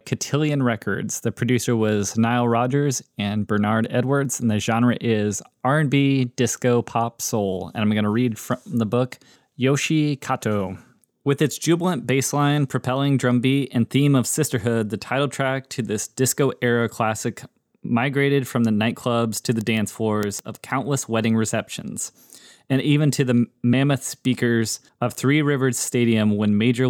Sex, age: male, 20-39